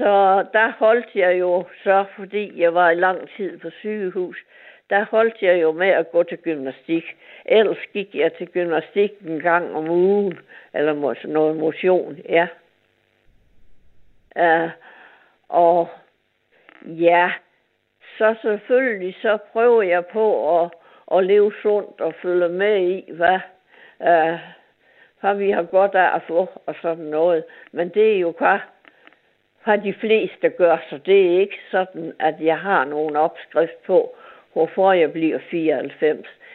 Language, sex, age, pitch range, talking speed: Danish, female, 60-79, 165-215 Hz, 150 wpm